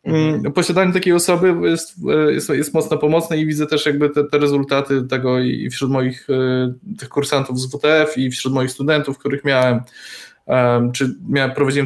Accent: native